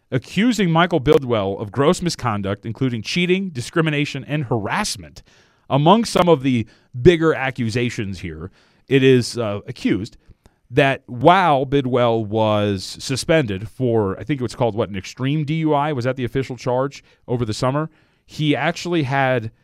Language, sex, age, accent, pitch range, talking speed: English, male, 30-49, American, 115-150 Hz, 145 wpm